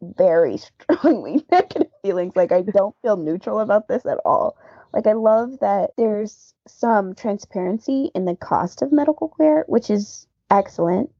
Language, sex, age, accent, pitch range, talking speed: English, female, 20-39, American, 185-250 Hz, 155 wpm